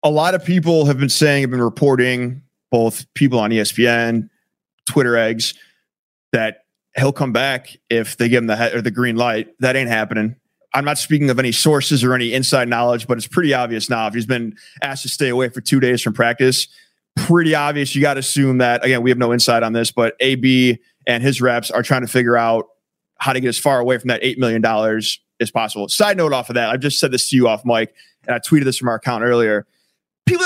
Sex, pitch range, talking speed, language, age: male, 125-185 Hz, 235 wpm, English, 30-49